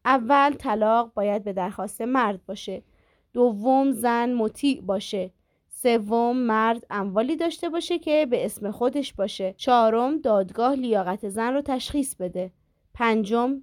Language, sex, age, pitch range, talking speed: Persian, female, 30-49, 205-275 Hz, 130 wpm